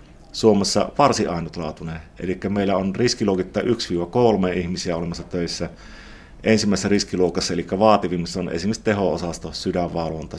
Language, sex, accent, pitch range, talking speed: Finnish, male, native, 85-100 Hz, 110 wpm